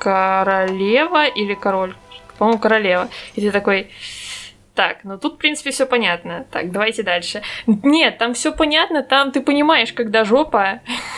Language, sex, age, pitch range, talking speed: Russian, female, 20-39, 205-255 Hz, 145 wpm